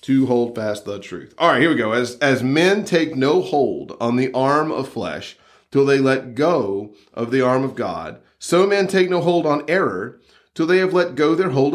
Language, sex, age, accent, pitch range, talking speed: English, male, 40-59, American, 145-225 Hz, 225 wpm